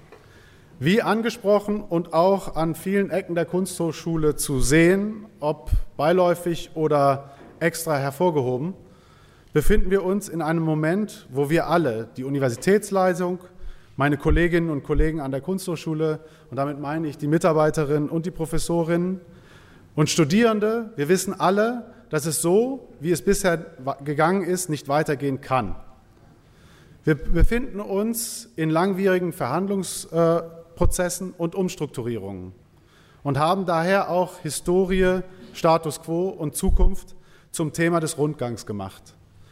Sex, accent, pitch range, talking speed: male, German, 150-185 Hz, 125 wpm